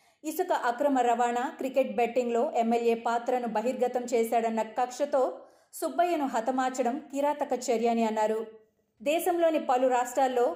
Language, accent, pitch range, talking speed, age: Telugu, native, 230-265 Hz, 100 wpm, 30-49